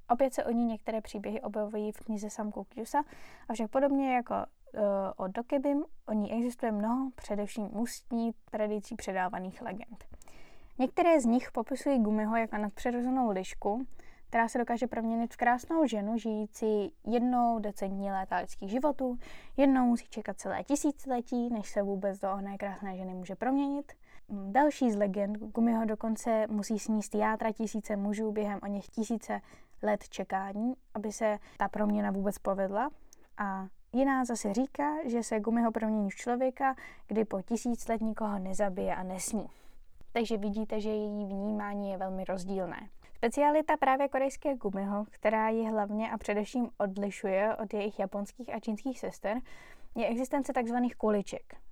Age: 10-29